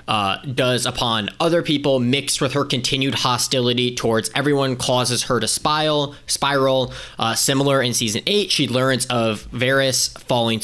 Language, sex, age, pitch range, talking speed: English, male, 20-39, 115-135 Hz, 145 wpm